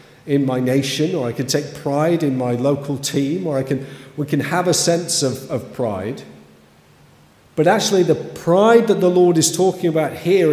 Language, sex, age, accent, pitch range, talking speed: English, male, 50-69, British, 135-175 Hz, 195 wpm